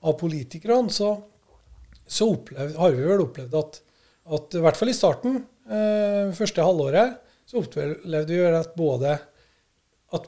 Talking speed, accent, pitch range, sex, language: 160 wpm, Swedish, 145-195 Hz, male, English